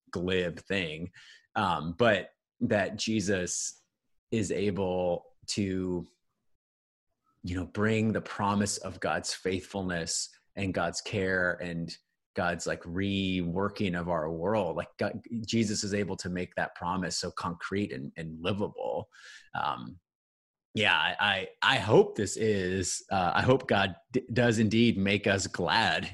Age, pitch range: 30-49, 90-115 Hz